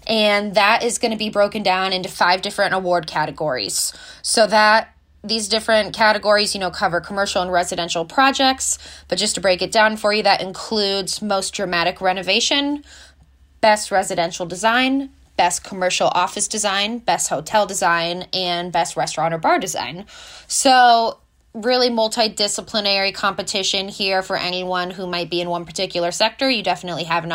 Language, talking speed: English, 160 wpm